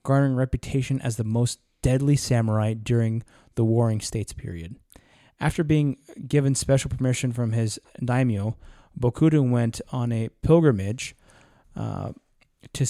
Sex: male